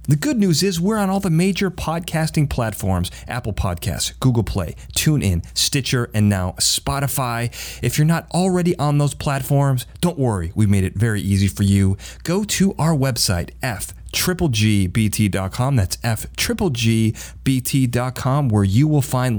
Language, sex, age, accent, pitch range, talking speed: English, male, 30-49, American, 100-145 Hz, 145 wpm